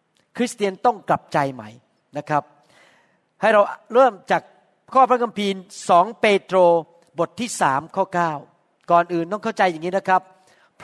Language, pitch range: Thai, 180-235 Hz